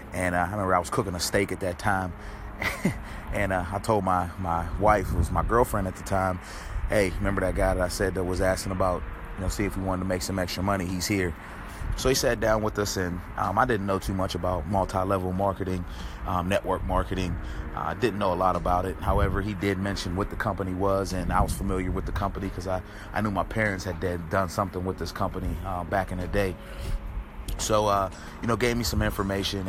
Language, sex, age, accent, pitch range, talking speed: English, male, 30-49, American, 90-100 Hz, 240 wpm